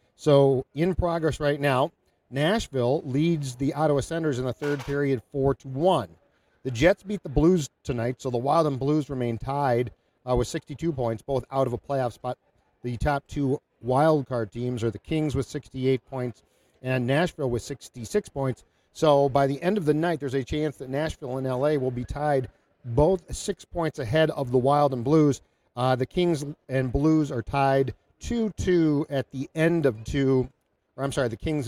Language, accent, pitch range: English, American, 125-155 Hz